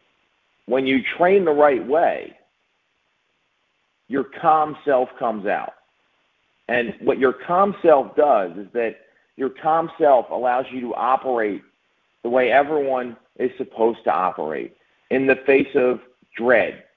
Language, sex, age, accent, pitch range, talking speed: English, male, 40-59, American, 120-155 Hz, 135 wpm